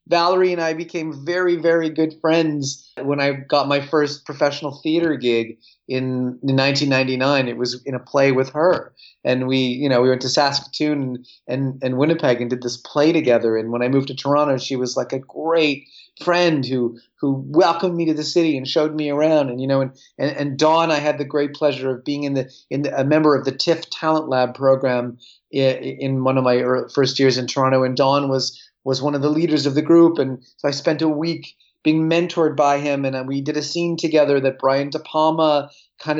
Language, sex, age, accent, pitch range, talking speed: English, male, 30-49, American, 135-160 Hz, 220 wpm